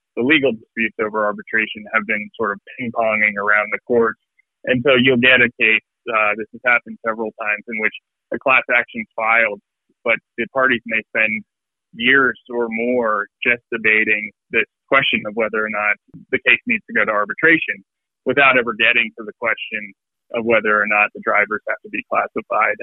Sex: male